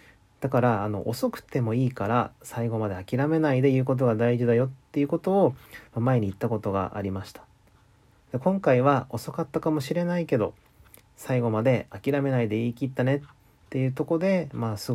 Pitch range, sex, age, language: 105-135 Hz, male, 40-59, Japanese